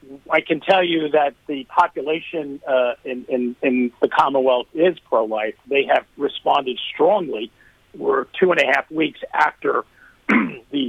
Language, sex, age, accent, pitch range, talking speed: English, male, 50-69, American, 125-160 Hz, 150 wpm